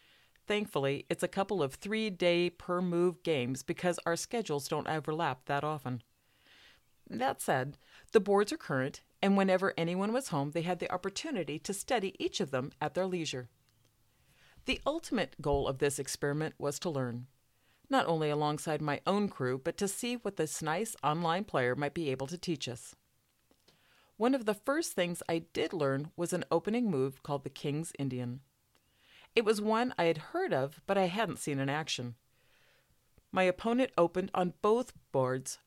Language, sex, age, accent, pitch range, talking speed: English, female, 40-59, American, 140-195 Hz, 170 wpm